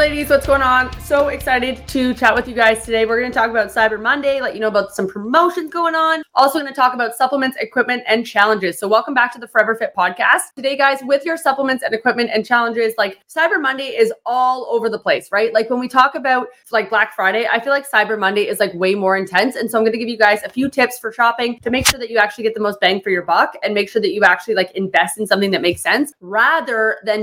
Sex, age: female, 20-39